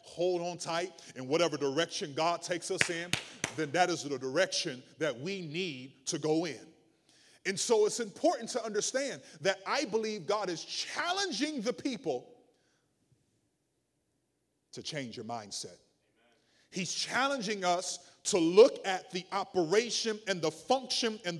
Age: 30-49